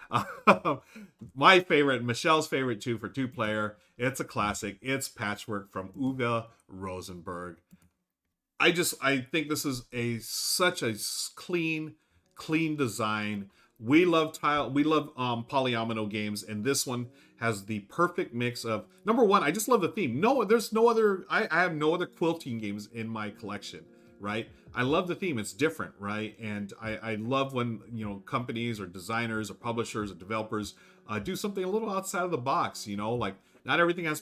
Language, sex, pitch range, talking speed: English, male, 100-140 Hz, 175 wpm